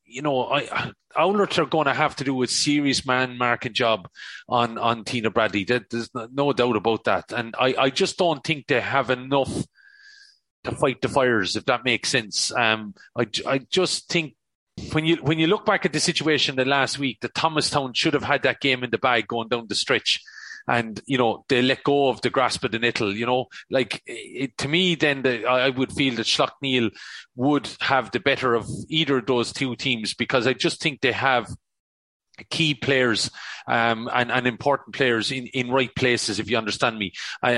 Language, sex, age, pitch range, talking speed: English, male, 30-49, 120-145 Hz, 210 wpm